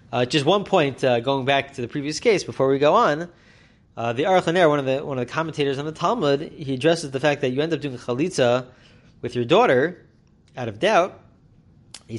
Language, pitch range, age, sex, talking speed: English, 120-155 Hz, 30-49, male, 210 wpm